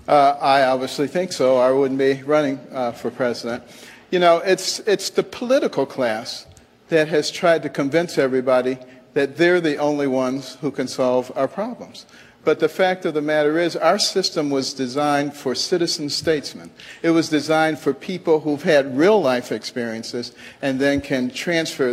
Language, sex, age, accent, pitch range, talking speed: English, male, 50-69, American, 135-165 Hz, 170 wpm